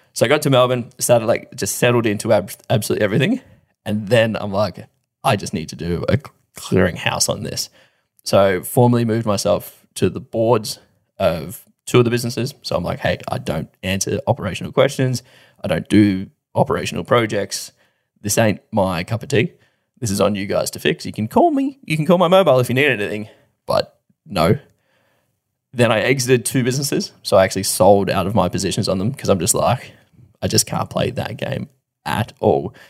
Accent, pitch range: Australian, 105-140 Hz